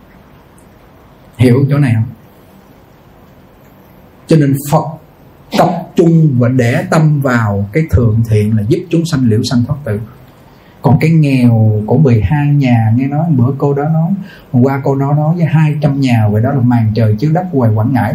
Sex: male